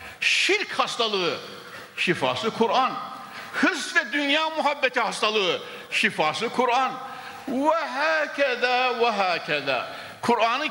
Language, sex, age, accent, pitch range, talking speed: Turkish, male, 60-79, native, 150-235 Hz, 90 wpm